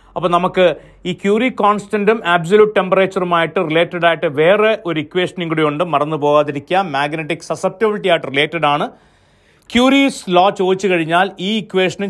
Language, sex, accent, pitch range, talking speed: Malayalam, male, native, 150-205 Hz, 125 wpm